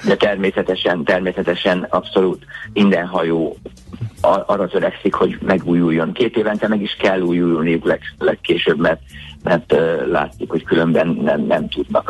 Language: Hungarian